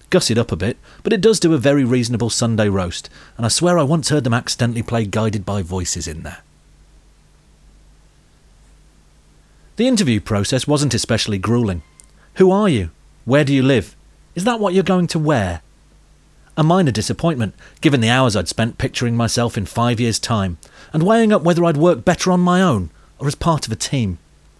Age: 40-59